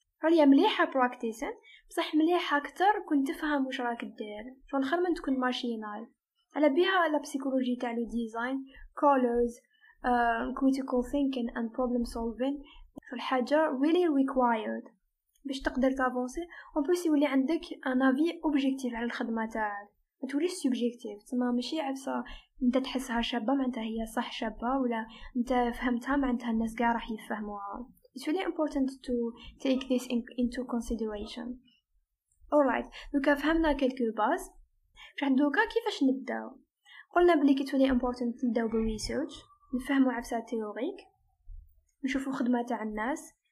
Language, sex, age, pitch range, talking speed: Arabic, female, 10-29, 240-300 Hz, 125 wpm